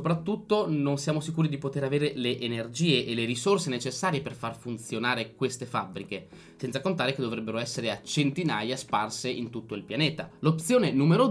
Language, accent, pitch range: Italian, native, 115-155 Hz